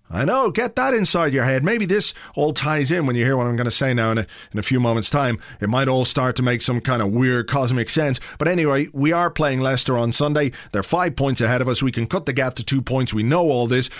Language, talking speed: English, 285 wpm